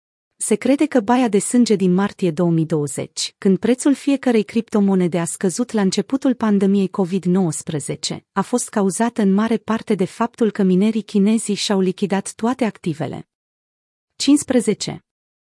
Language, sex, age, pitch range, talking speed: Romanian, female, 30-49, 180-225 Hz, 135 wpm